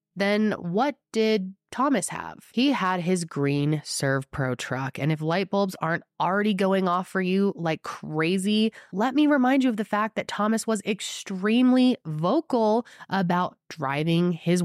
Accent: American